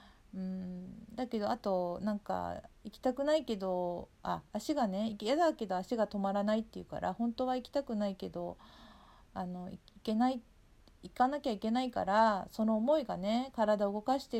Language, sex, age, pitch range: Japanese, female, 40-59, 190-235 Hz